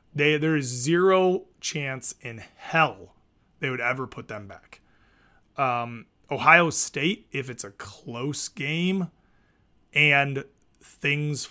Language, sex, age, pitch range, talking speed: English, male, 30-49, 115-150 Hz, 120 wpm